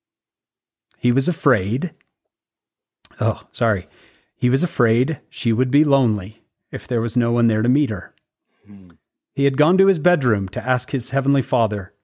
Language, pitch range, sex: English, 110-135 Hz, male